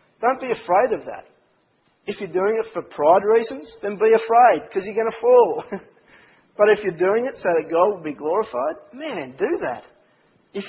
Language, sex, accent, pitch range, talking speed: English, male, Australian, 145-190 Hz, 195 wpm